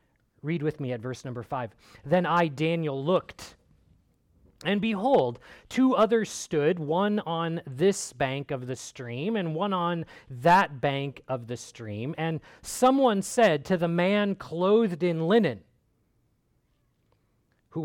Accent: American